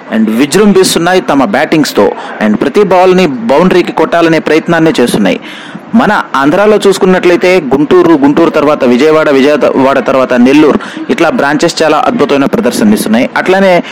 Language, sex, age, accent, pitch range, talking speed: English, male, 30-49, Indian, 165-220 Hz, 140 wpm